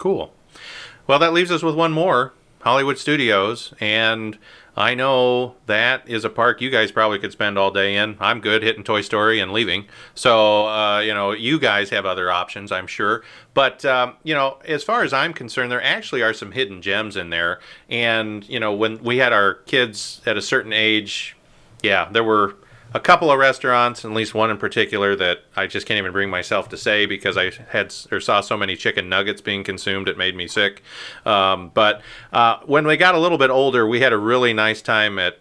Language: English